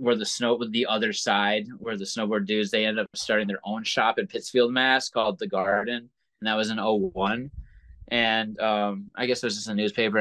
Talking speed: 225 wpm